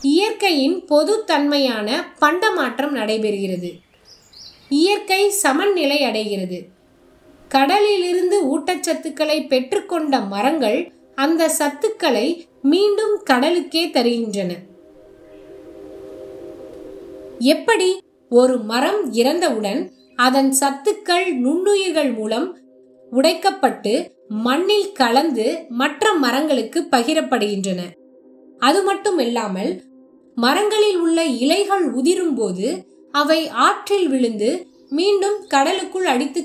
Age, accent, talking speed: 20-39, native, 60 wpm